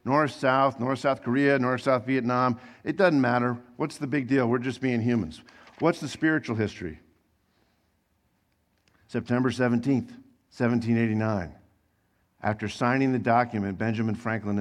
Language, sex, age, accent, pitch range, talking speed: English, male, 50-69, American, 95-130 Hz, 130 wpm